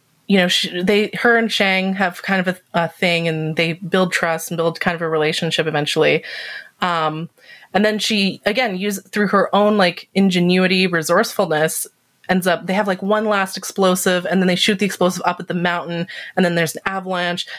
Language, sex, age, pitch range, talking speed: English, female, 20-39, 160-195 Hz, 200 wpm